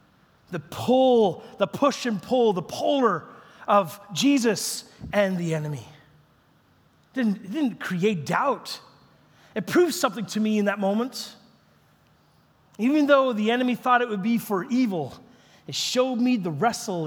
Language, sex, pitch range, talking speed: English, male, 155-230 Hz, 150 wpm